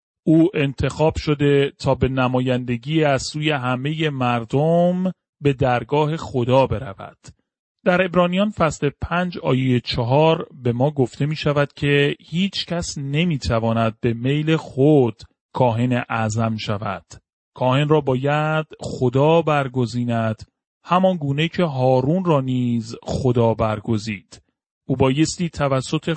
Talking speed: 120 wpm